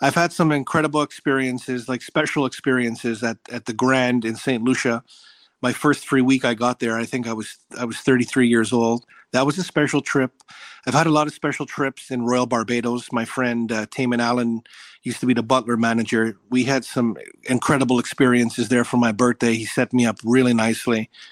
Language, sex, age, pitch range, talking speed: English, male, 40-59, 120-150 Hz, 205 wpm